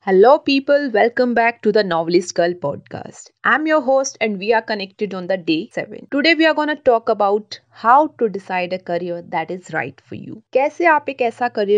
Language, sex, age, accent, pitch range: Hindi, female, 30-49, native, 180-260 Hz